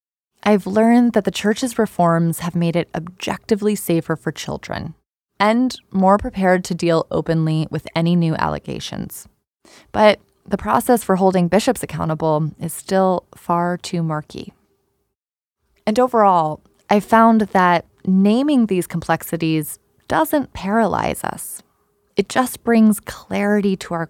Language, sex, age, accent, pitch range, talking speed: English, female, 20-39, American, 170-220 Hz, 130 wpm